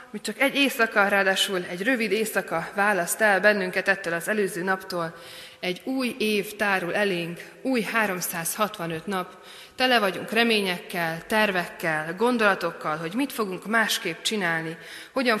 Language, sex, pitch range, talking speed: Hungarian, female, 170-225 Hz, 130 wpm